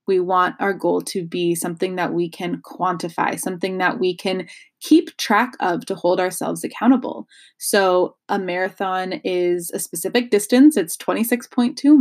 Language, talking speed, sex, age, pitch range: English, 155 wpm, female, 20-39, 185-275 Hz